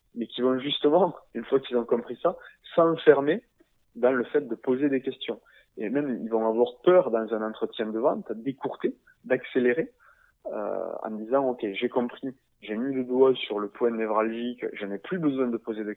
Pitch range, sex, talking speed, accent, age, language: 110-140 Hz, male, 200 wpm, French, 20-39, French